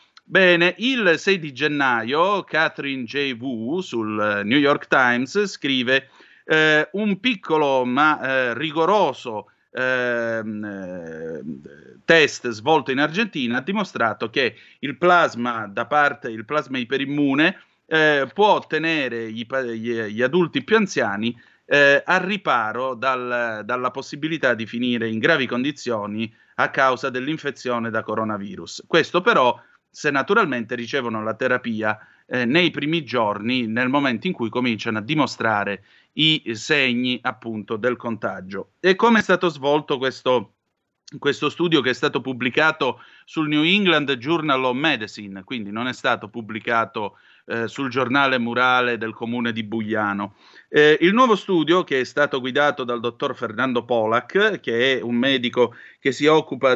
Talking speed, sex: 140 wpm, male